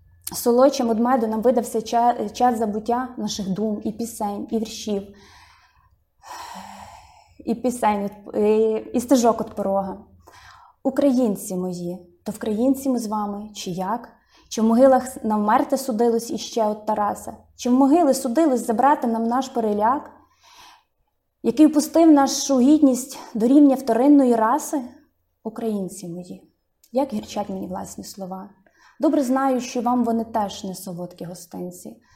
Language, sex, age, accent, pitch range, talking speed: Ukrainian, female, 20-39, native, 185-245 Hz, 130 wpm